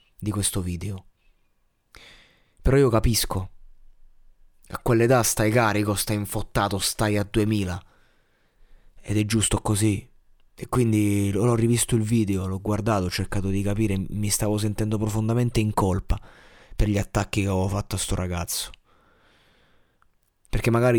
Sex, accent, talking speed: male, native, 135 wpm